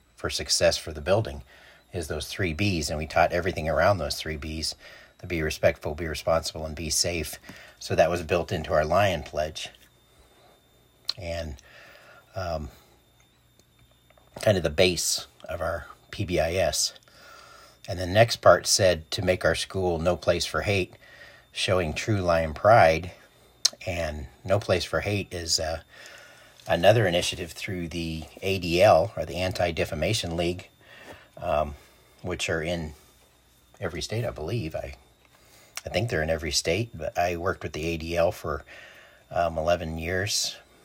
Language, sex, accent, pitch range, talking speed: English, male, American, 80-95 Hz, 145 wpm